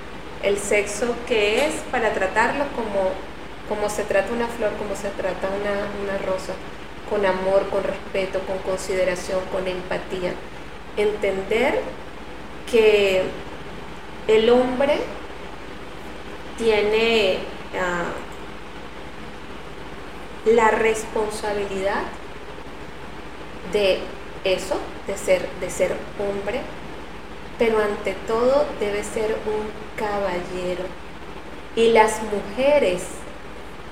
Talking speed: 90 wpm